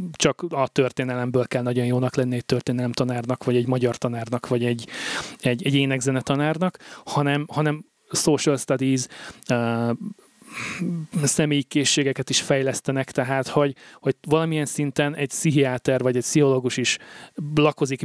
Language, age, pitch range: Hungarian, 30-49, 130-150 Hz